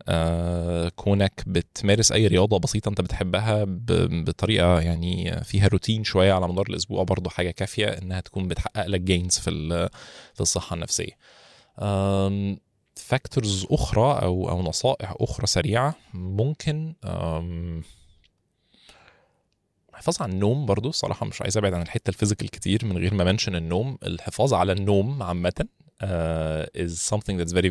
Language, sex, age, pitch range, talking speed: Arabic, male, 20-39, 90-115 Hz, 140 wpm